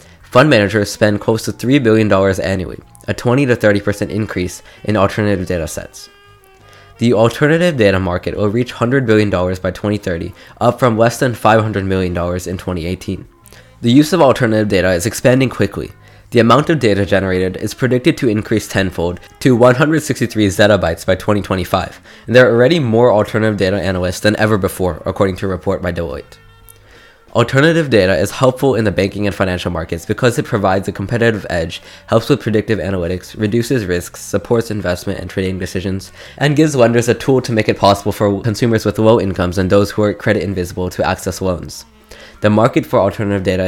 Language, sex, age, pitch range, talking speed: English, male, 20-39, 95-115 Hz, 175 wpm